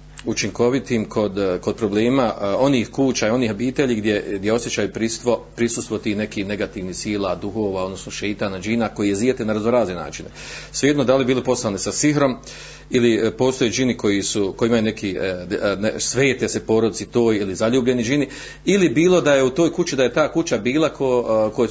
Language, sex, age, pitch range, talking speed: Croatian, male, 40-59, 110-145 Hz, 180 wpm